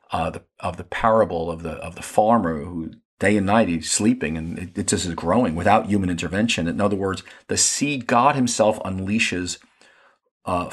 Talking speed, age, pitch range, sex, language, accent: 190 wpm, 40-59, 90-120 Hz, male, English, American